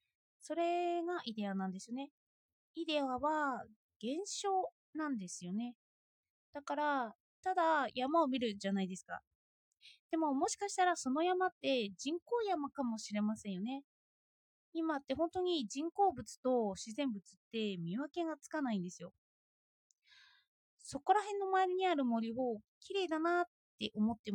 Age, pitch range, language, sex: 20-39, 230-340 Hz, Japanese, female